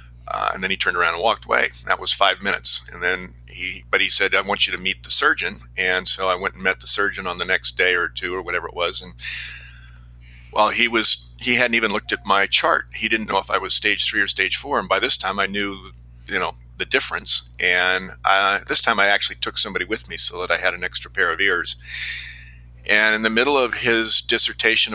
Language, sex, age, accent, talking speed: English, male, 50-69, American, 245 wpm